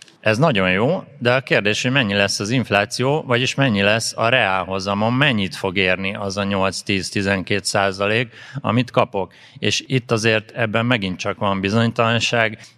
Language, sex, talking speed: Hungarian, male, 155 wpm